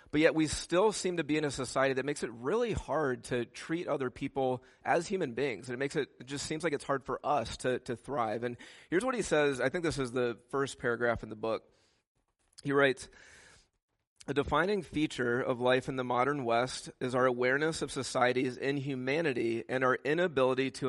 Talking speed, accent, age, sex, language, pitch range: 210 wpm, American, 30-49, male, English, 120-140 Hz